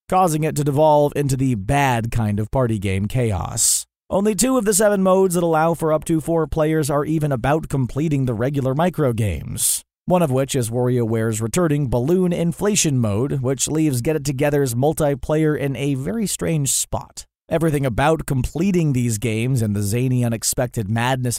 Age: 30-49